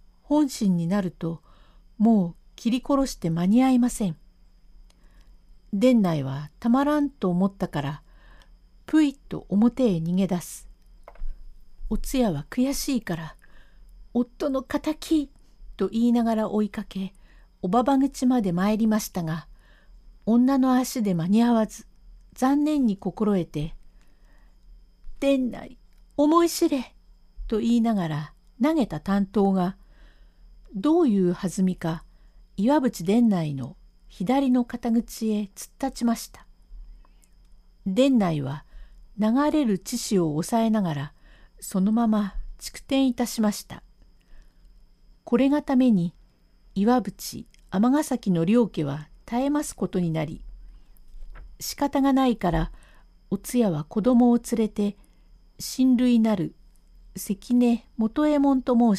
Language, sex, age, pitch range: Japanese, female, 50-69, 185-255 Hz